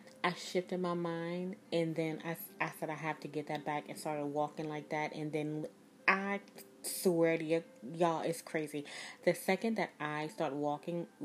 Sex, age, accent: female, 30-49, American